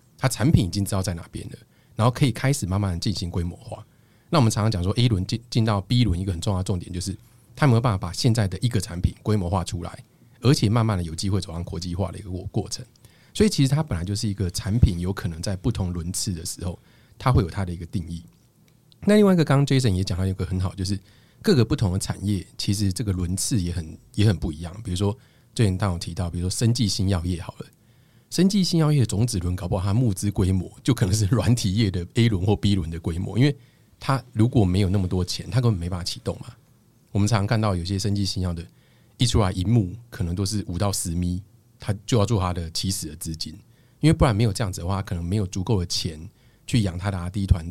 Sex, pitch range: male, 95-120 Hz